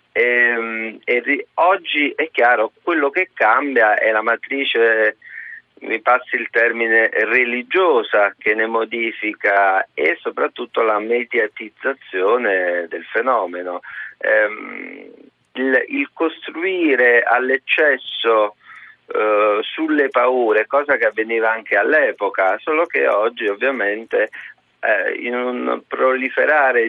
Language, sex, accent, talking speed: Italian, male, native, 95 wpm